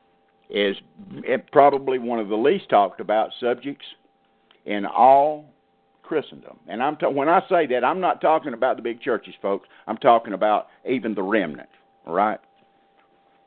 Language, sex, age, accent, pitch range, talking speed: English, male, 50-69, American, 90-140 Hz, 145 wpm